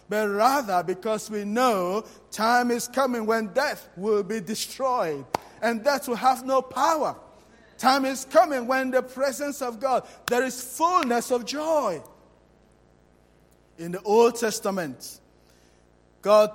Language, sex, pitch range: English, male, 185-250 Hz